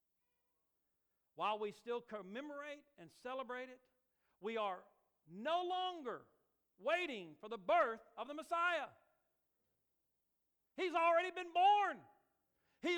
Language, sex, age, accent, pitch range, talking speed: English, male, 50-69, American, 235-325 Hz, 105 wpm